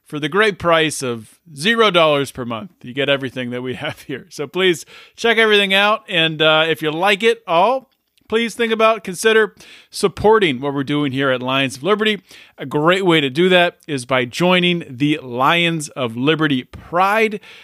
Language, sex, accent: English, male, American